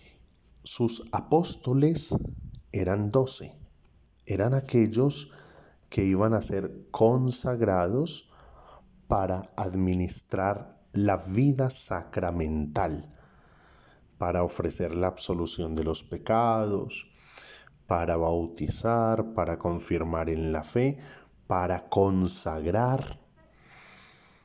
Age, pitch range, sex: 40-59, 95-130 Hz, male